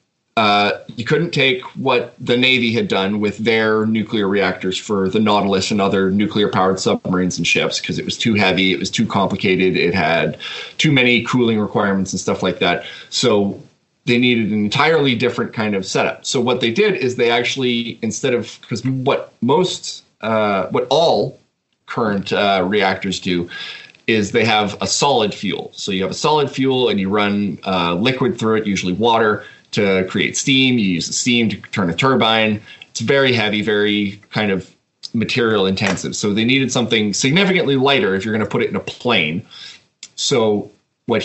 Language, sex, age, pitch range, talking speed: English, male, 30-49, 100-125 Hz, 185 wpm